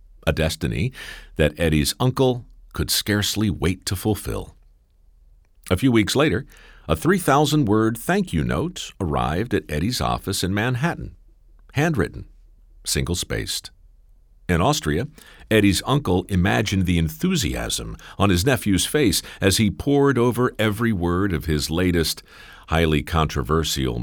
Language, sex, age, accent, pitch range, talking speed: English, male, 50-69, American, 80-115 Hz, 120 wpm